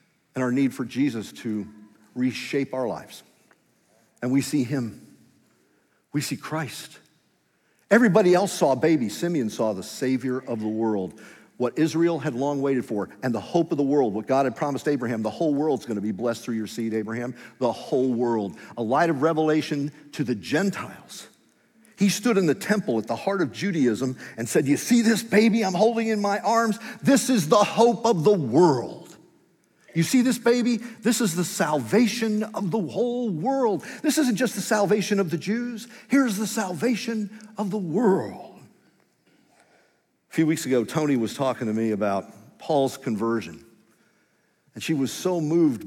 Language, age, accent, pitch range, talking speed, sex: English, 50-69, American, 125-210 Hz, 180 wpm, male